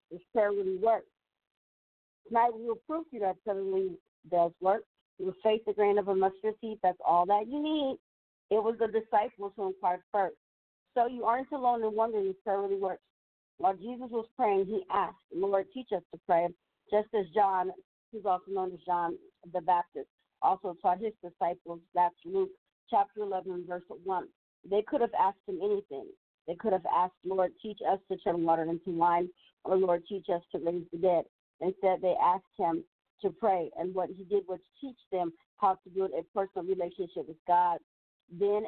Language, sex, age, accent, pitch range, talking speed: English, female, 50-69, American, 180-220 Hz, 195 wpm